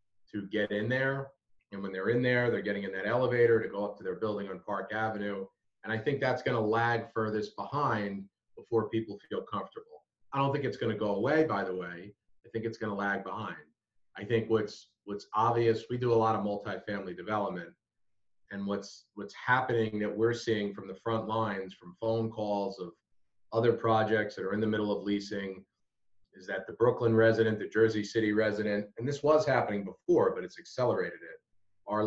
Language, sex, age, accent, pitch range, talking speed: English, male, 30-49, American, 100-115 Hz, 200 wpm